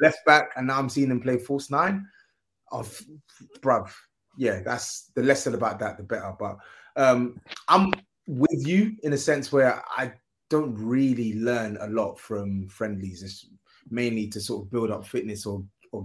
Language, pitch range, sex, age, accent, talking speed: English, 110-135 Hz, male, 20-39, British, 180 wpm